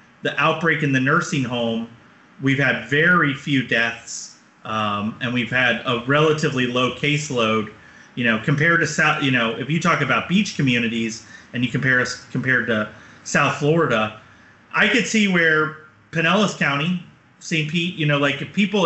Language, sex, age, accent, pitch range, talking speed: English, male, 30-49, American, 125-165 Hz, 170 wpm